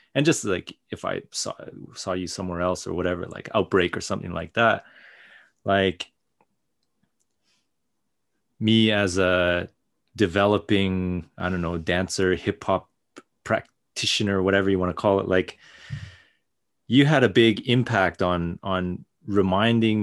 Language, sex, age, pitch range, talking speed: English, male, 30-49, 90-110 Hz, 135 wpm